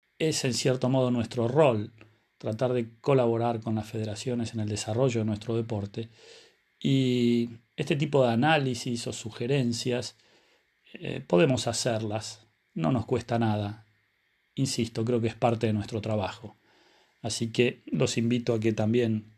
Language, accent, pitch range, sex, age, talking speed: Spanish, Argentinian, 110-125 Hz, male, 40-59, 145 wpm